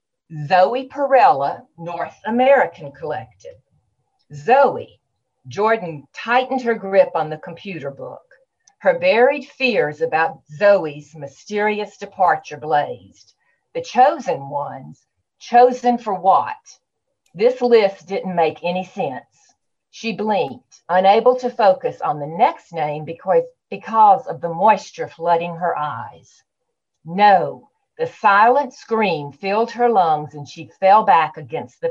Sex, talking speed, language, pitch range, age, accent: female, 120 wpm, English, 175-255 Hz, 50-69, American